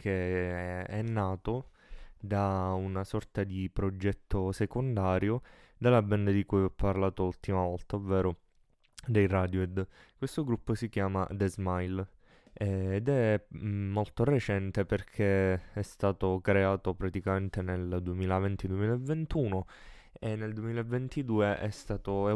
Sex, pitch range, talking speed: male, 95-105 Hz, 115 wpm